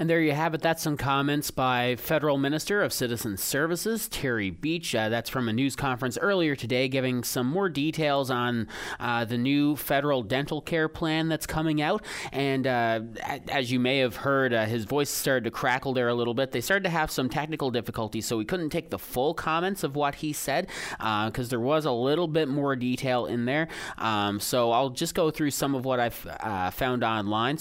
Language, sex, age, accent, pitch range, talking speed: English, male, 30-49, American, 115-150 Hz, 215 wpm